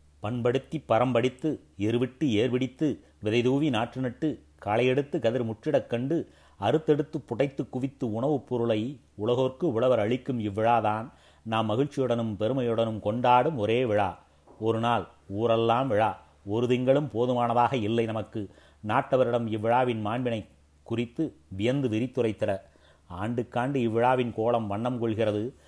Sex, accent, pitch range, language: male, native, 110-130 Hz, Tamil